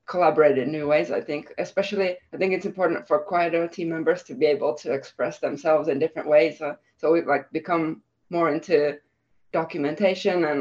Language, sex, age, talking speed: English, female, 20-39, 185 wpm